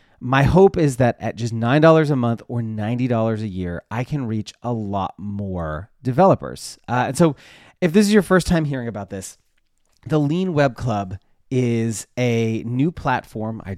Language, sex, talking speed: English, male, 180 wpm